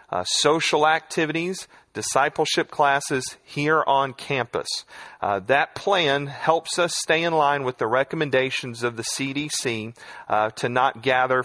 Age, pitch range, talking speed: 40-59, 130-175 Hz, 135 wpm